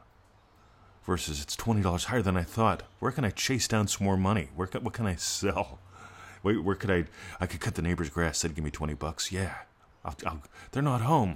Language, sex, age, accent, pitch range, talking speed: English, male, 40-59, American, 70-95 Hz, 225 wpm